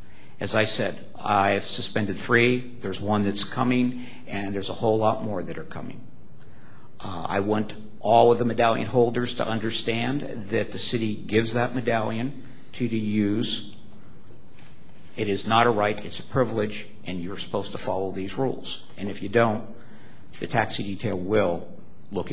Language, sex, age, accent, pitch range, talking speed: English, male, 50-69, American, 100-120 Hz, 170 wpm